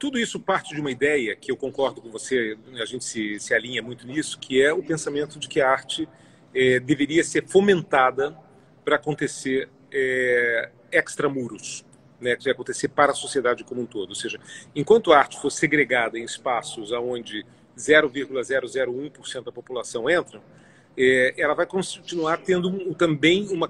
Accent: Brazilian